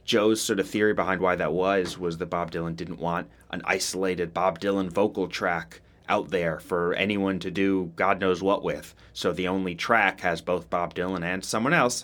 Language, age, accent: English, 30-49, American